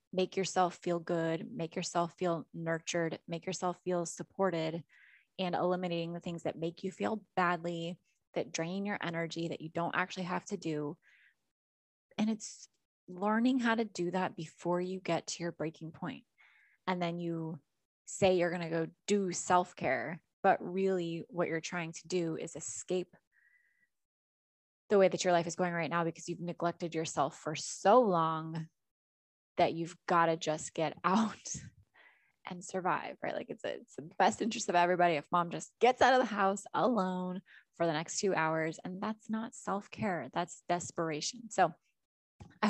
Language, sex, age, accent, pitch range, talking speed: English, female, 20-39, American, 165-190 Hz, 175 wpm